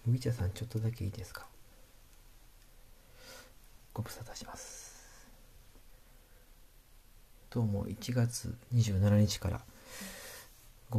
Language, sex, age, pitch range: Japanese, male, 40-59, 95-110 Hz